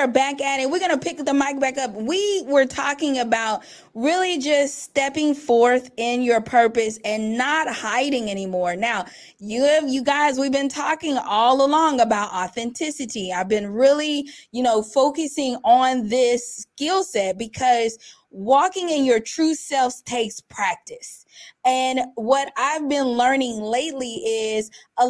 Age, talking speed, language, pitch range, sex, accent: 20-39, 150 wpm, English, 235-290 Hz, female, American